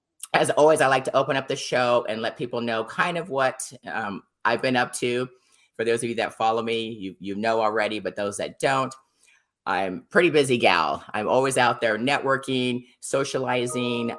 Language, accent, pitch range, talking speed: English, American, 100-130 Hz, 195 wpm